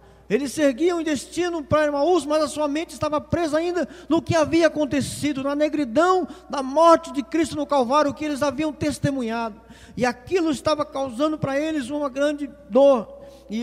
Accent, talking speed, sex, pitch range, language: Brazilian, 175 wpm, male, 245-300 Hz, Portuguese